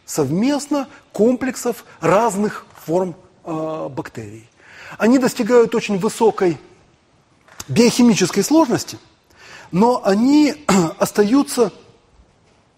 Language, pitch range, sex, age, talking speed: Russian, 160-215 Hz, male, 30-49, 70 wpm